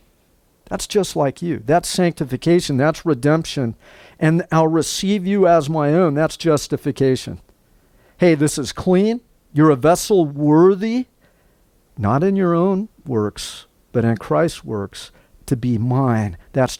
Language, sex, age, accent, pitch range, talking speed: English, male, 50-69, American, 130-170 Hz, 135 wpm